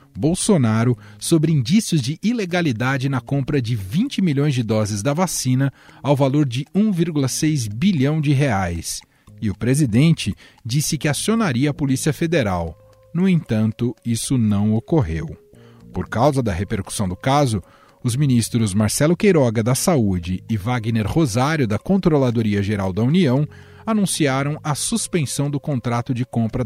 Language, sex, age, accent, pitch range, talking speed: Portuguese, male, 40-59, Brazilian, 110-150 Hz, 135 wpm